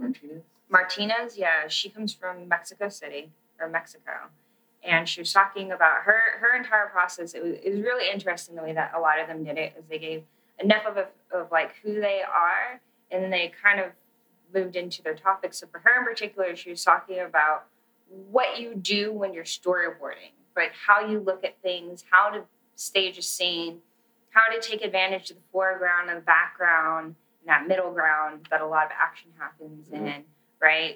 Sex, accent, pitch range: female, American, 160-205 Hz